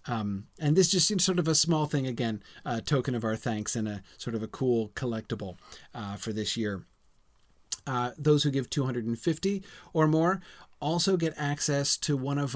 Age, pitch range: 30-49, 115-145 Hz